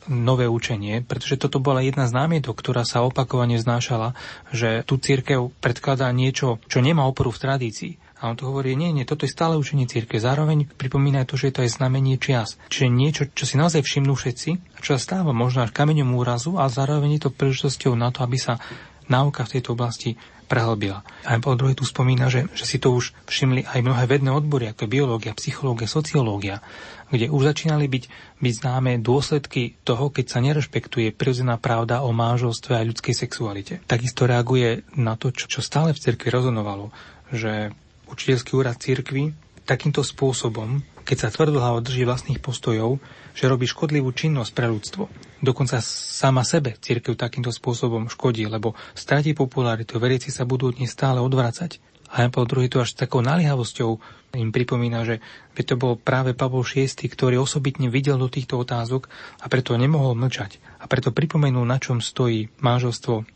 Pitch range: 120-135 Hz